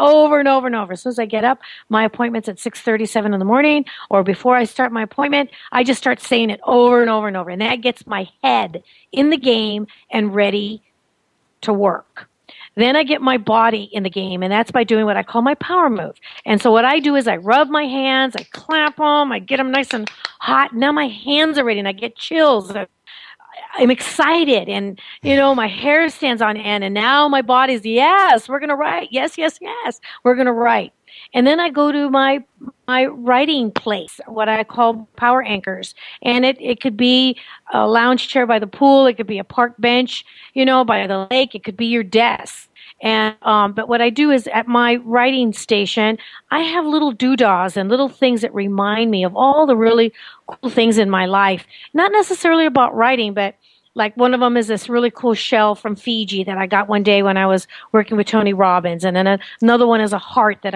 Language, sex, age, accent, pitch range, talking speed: English, female, 40-59, American, 210-270 Hz, 225 wpm